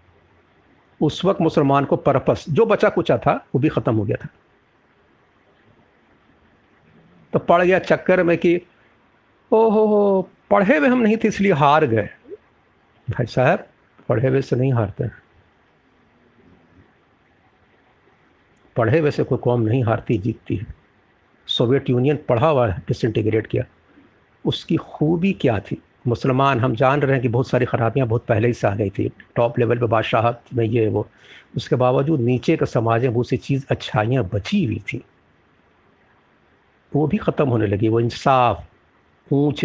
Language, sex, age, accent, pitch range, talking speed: Hindi, male, 60-79, native, 115-150 Hz, 145 wpm